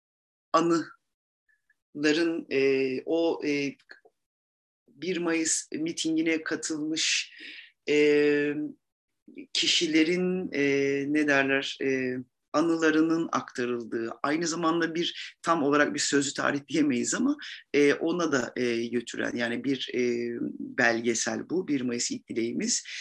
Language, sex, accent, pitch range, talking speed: Turkish, male, native, 135-225 Hz, 100 wpm